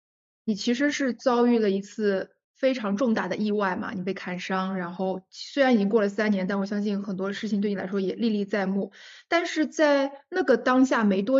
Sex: female